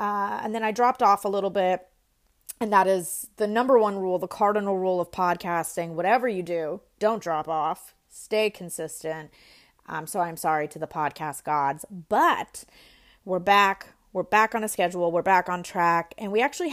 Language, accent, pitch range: English, American, 185-235 Hz